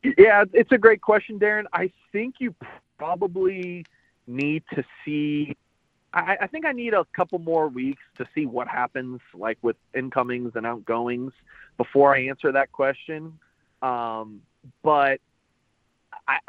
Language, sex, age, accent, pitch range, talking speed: English, male, 30-49, American, 120-155 Hz, 140 wpm